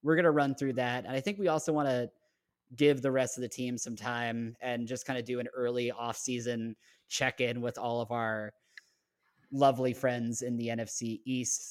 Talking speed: 205 wpm